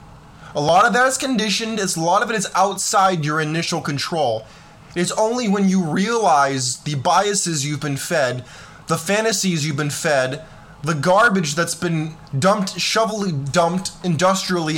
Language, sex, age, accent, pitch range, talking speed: English, male, 20-39, American, 160-210 Hz, 160 wpm